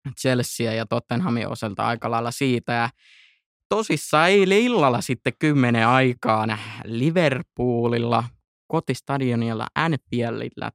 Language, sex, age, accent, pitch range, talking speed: Finnish, male, 20-39, native, 115-135 Hz, 90 wpm